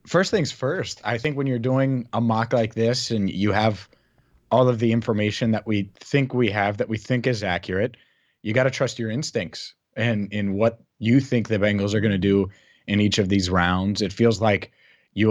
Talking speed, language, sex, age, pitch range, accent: 215 wpm, English, male, 30-49, 100-115 Hz, American